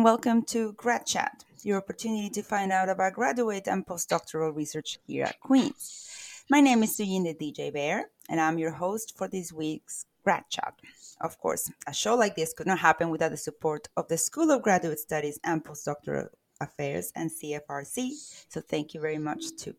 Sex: female